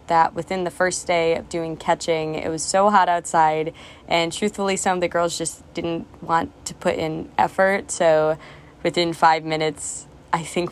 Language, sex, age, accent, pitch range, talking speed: English, female, 20-39, American, 165-220 Hz, 180 wpm